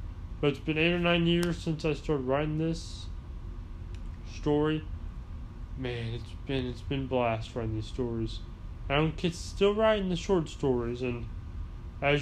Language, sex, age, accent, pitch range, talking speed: English, male, 20-39, American, 105-150 Hz, 145 wpm